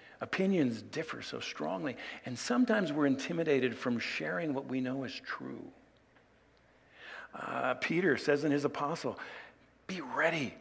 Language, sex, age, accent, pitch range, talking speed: English, male, 50-69, American, 120-195 Hz, 130 wpm